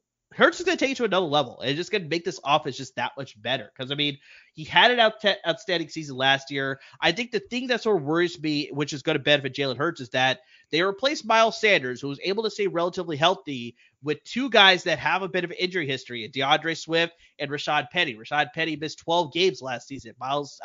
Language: English